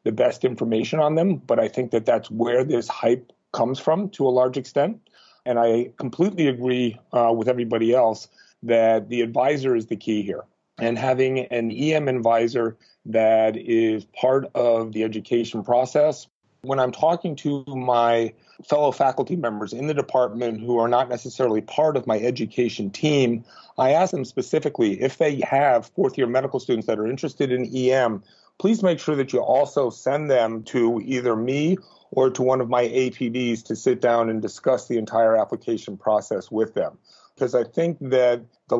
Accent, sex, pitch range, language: American, male, 115-130 Hz, English